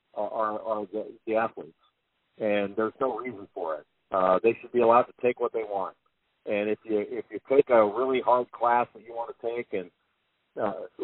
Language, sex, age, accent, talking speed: English, male, 50-69, American, 205 wpm